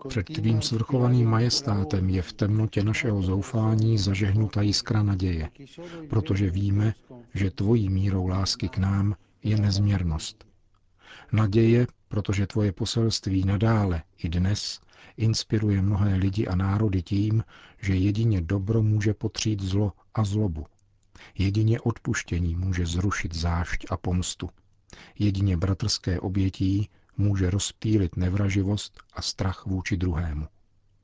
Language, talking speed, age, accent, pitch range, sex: Czech, 115 wpm, 50-69, native, 95-110 Hz, male